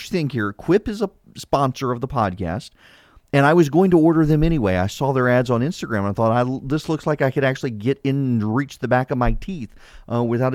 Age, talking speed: 40-59, 240 wpm